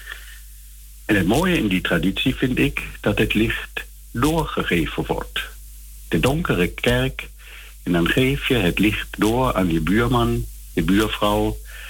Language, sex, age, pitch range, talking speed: Dutch, male, 60-79, 90-125 Hz, 140 wpm